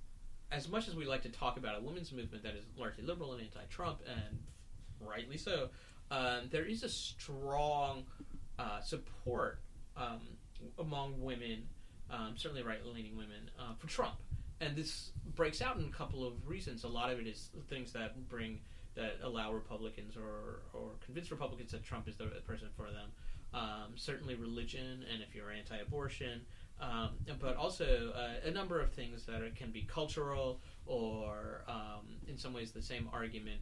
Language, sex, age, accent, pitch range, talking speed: English, male, 30-49, American, 105-135 Hz, 175 wpm